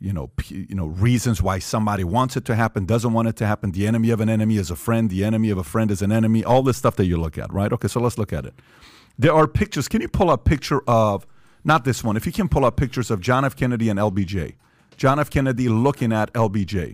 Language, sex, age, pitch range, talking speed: English, male, 40-59, 105-130 Hz, 275 wpm